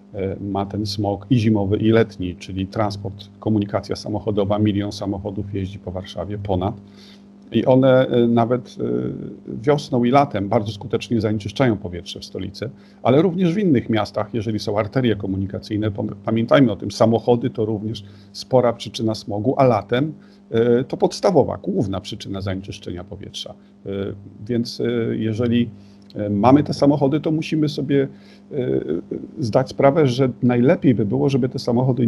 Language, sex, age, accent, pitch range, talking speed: Polish, male, 40-59, native, 100-125 Hz, 135 wpm